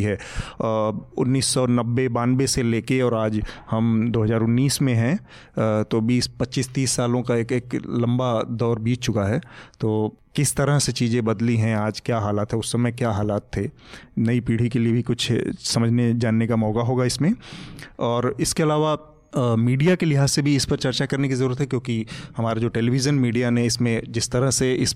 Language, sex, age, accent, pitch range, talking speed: Hindi, male, 30-49, native, 115-135 Hz, 185 wpm